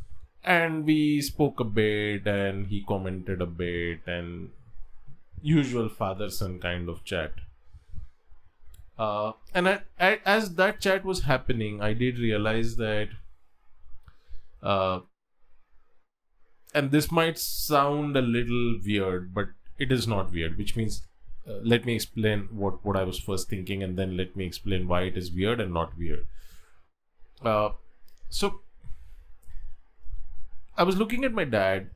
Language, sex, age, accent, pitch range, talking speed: English, male, 20-39, Indian, 90-130 Hz, 140 wpm